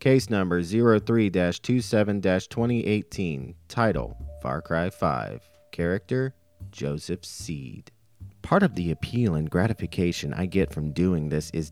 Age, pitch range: 40-59, 80-110 Hz